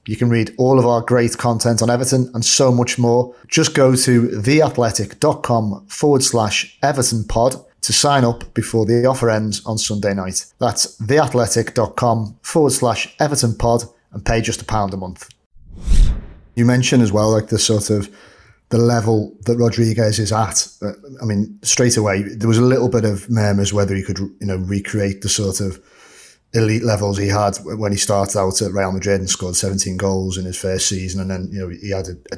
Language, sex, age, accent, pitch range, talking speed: English, male, 30-49, British, 100-120 Hz, 195 wpm